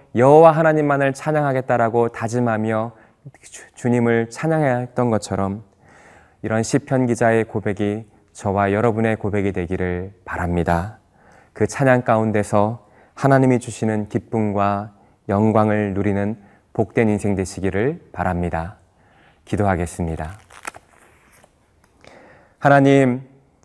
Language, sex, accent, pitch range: Korean, male, native, 105-130 Hz